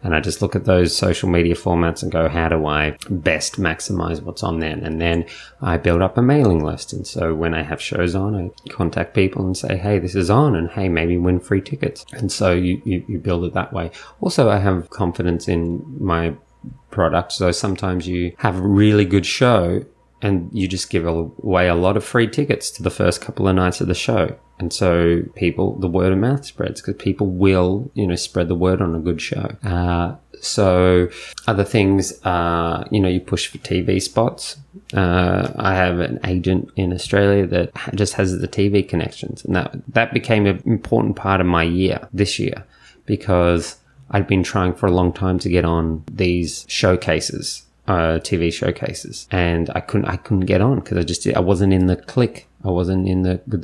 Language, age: English, 20-39